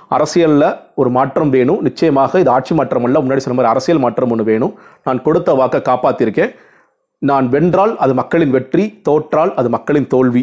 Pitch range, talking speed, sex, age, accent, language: 125-160 Hz, 165 wpm, male, 40-59, native, Tamil